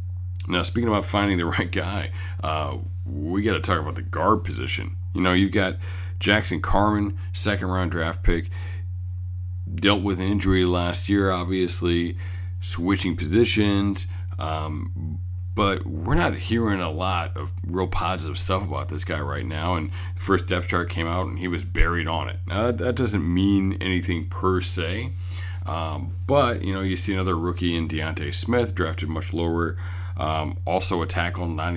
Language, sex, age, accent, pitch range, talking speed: English, male, 40-59, American, 90-95 Hz, 170 wpm